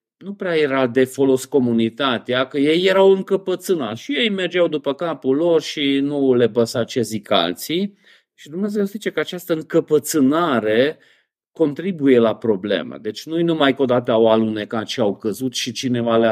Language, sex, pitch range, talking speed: Romanian, male, 115-165 Hz, 175 wpm